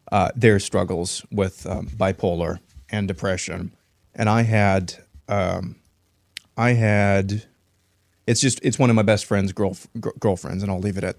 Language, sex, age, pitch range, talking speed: English, male, 30-49, 95-110 Hz, 150 wpm